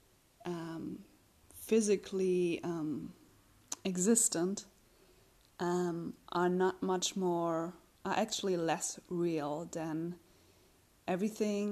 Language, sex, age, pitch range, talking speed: English, female, 20-39, 170-185 Hz, 75 wpm